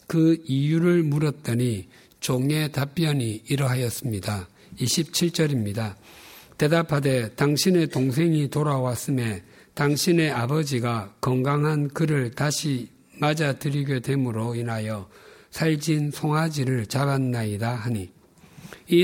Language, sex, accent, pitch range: Korean, male, native, 120-155 Hz